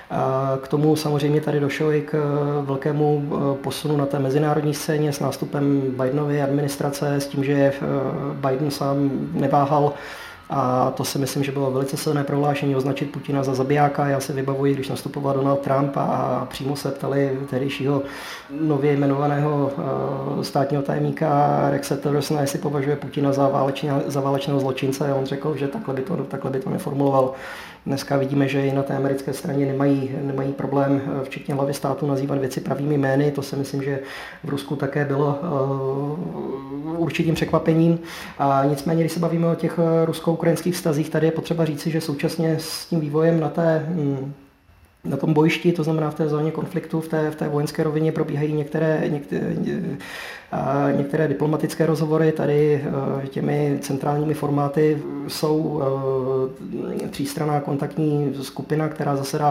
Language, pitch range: Czech, 140-155 Hz